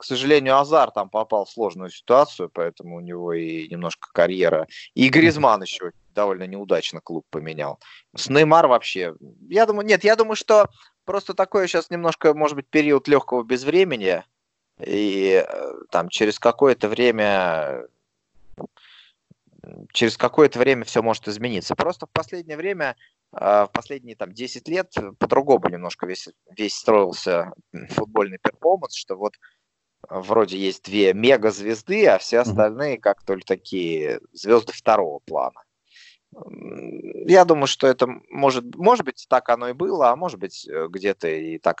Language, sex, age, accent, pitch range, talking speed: Russian, male, 20-39, native, 105-170 Hz, 135 wpm